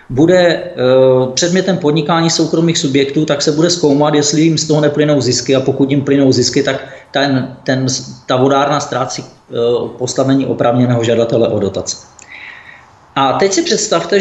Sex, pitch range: male, 135-175 Hz